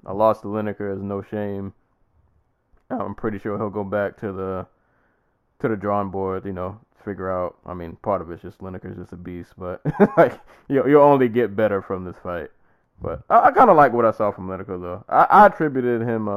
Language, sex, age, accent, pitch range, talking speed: English, male, 20-39, American, 95-110 Hz, 220 wpm